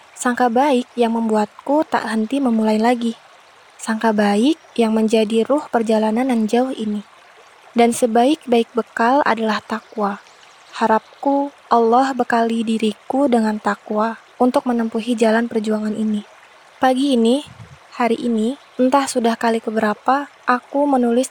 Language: Indonesian